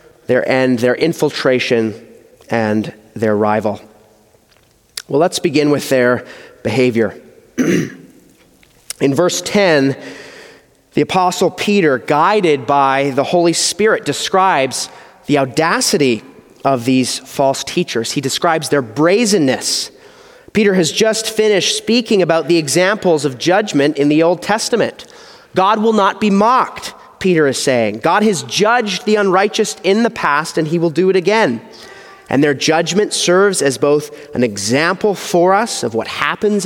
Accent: American